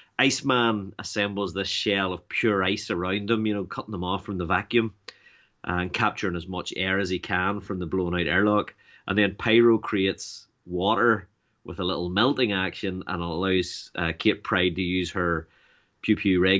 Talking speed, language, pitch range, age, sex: 175 wpm, English, 90-110 Hz, 30-49, male